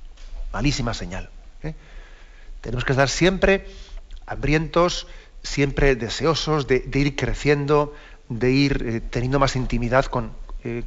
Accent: Spanish